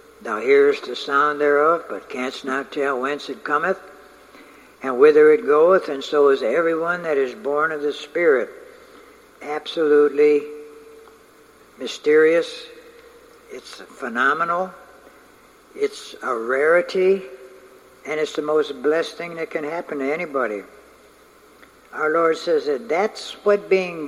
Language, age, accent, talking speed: English, 60-79, American, 125 wpm